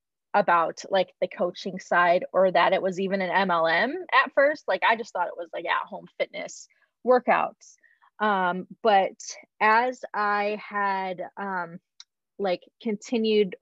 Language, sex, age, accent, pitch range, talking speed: English, female, 20-39, American, 185-235 Hz, 140 wpm